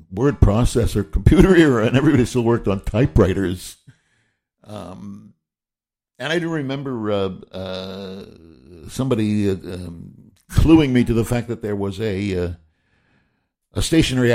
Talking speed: 135 wpm